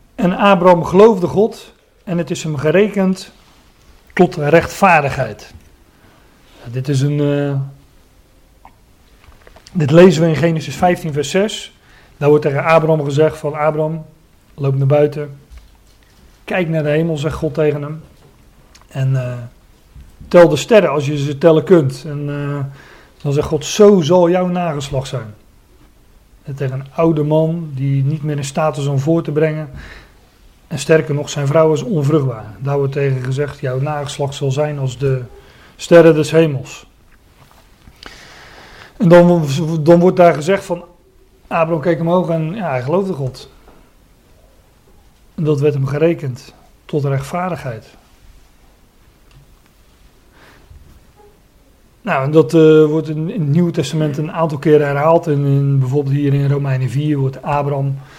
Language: Dutch